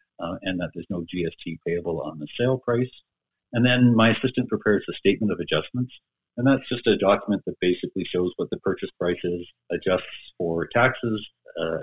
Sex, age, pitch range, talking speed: male, 50-69, 90-120 Hz, 190 wpm